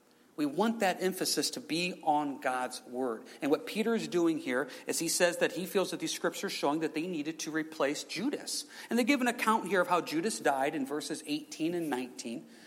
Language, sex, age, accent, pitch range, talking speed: English, male, 40-59, American, 170-250 Hz, 225 wpm